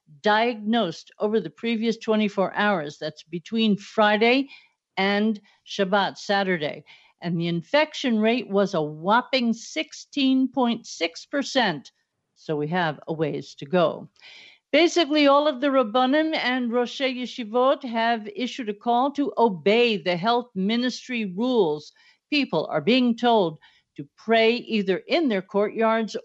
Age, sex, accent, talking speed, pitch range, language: 50-69, female, American, 125 wpm, 180-240 Hz, English